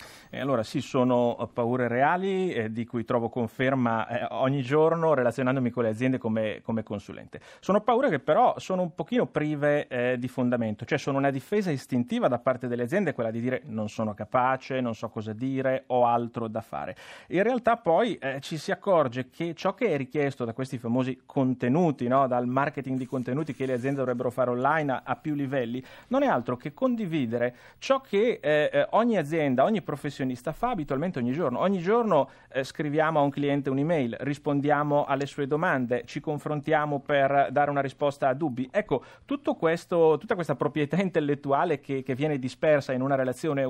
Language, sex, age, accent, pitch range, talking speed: Italian, male, 30-49, native, 125-155 Hz, 185 wpm